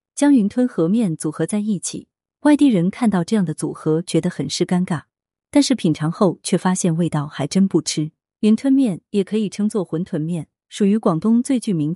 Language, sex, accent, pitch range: Chinese, female, native, 160-225 Hz